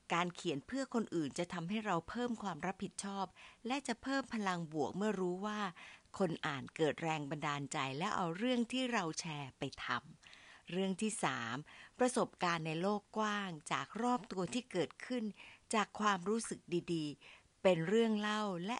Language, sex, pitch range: Thai, female, 155-215 Hz